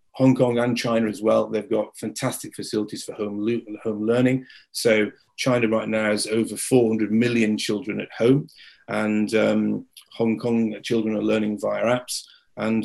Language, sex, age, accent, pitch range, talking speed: English, male, 30-49, British, 105-125 Hz, 170 wpm